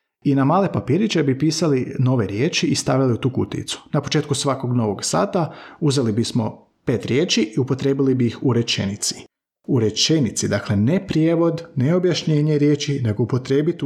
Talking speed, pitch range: 165 wpm, 115-150 Hz